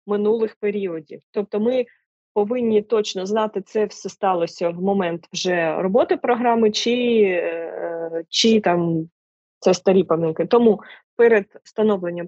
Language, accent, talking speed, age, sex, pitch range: Ukrainian, native, 115 wpm, 20-39, female, 190-230 Hz